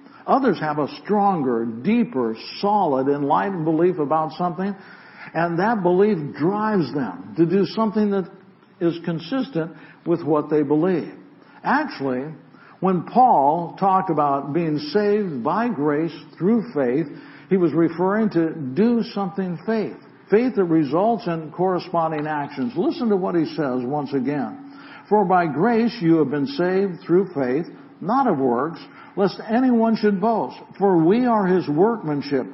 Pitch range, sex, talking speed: 160-215 Hz, male, 140 wpm